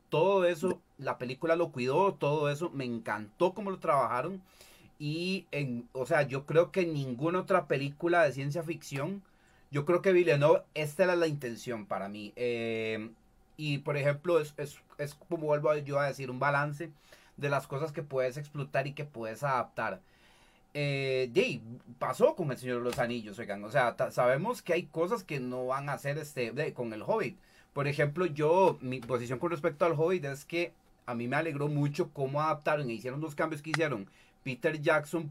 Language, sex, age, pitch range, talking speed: Spanish, male, 30-49, 130-165 Hz, 190 wpm